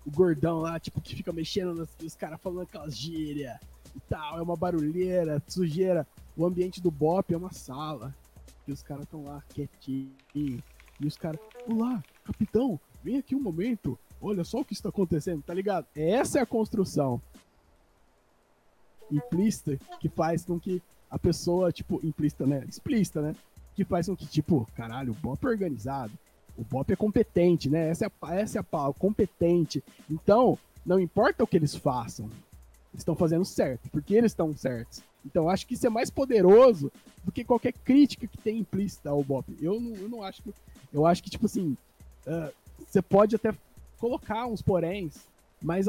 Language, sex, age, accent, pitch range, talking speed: Portuguese, male, 20-39, Brazilian, 150-210 Hz, 180 wpm